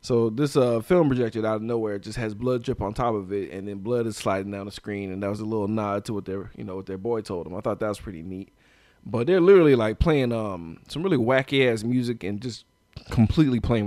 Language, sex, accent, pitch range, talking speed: English, male, American, 95-120 Hz, 270 wpm